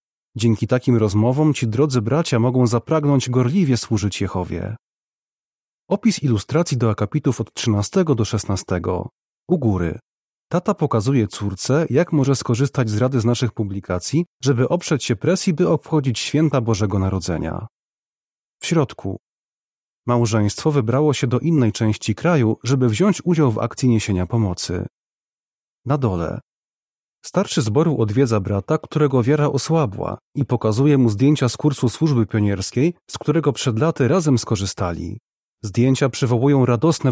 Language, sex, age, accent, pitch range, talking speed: Polish, male, 30-49, native, 110-145 Hz, 135 wpm